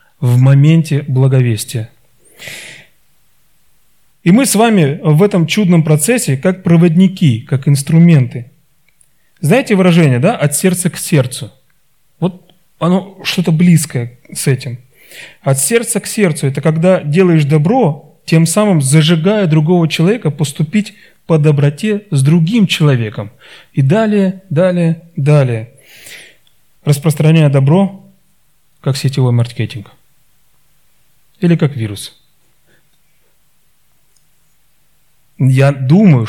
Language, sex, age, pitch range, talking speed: Russian, male, 30-49, 135-170 Hz, 100 wpm